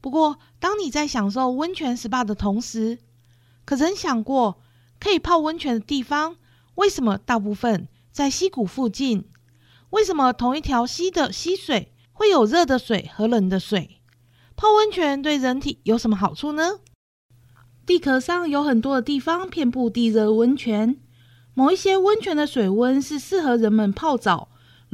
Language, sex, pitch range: Chinese, female, 210-305 Hz